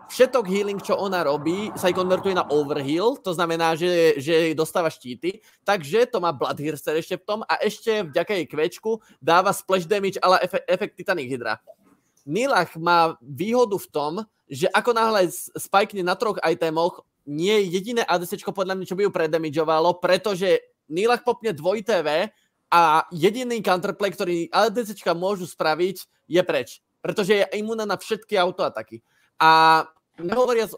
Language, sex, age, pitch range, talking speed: Czech, male, 20-39, 165-200 Hz, 155 wpm